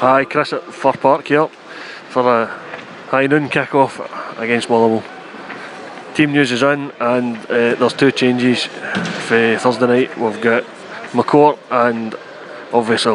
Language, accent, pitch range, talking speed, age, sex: English, British, 110-125 Hz, 135 wpm, 20-39, male